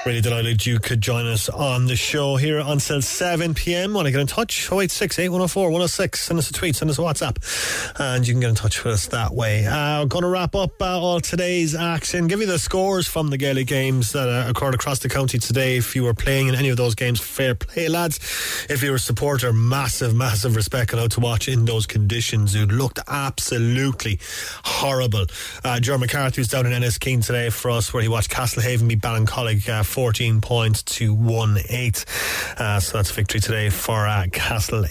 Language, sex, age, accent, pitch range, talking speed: English, male, 30-49, Irish, 115-145 Hz, 205 wpm